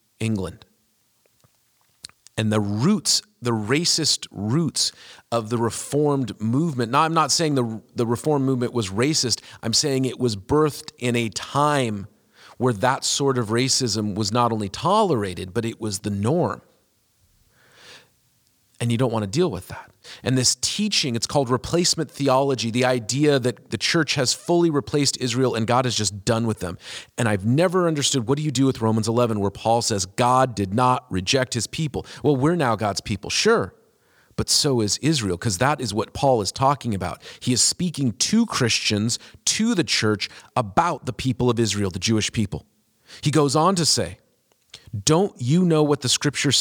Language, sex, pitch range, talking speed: English, male, 110-145 Hz, 180 wpm